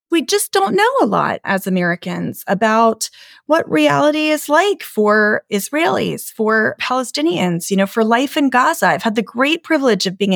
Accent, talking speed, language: American, 175 wpm, English